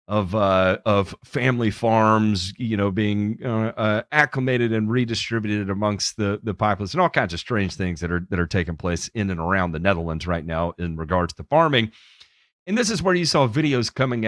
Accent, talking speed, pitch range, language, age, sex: American, 200 wpm, 100-135 Hz, English, 40-59, male